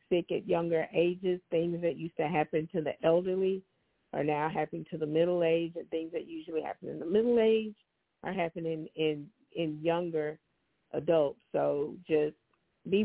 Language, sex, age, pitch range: English, female, 40-59, 160-180 Hz